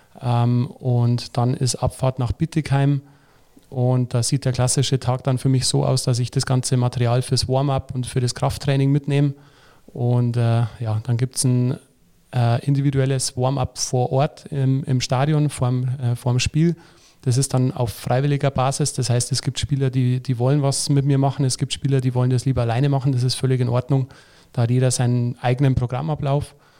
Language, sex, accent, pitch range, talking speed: German, male, German, 125-140 Hz, 195 wpm